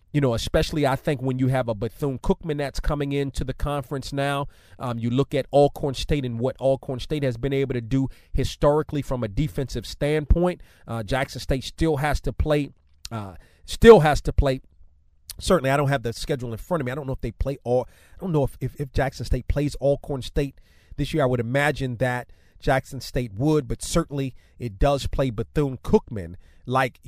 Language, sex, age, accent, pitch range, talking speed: English, male, 30-49, American, 120-155 Hz, 205 wpm